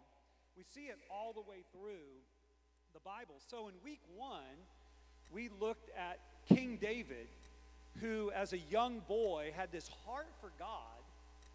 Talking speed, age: 145 wpm, 40-59